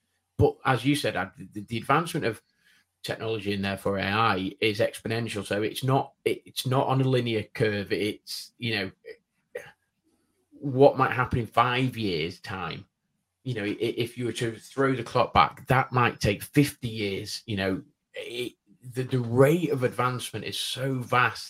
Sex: male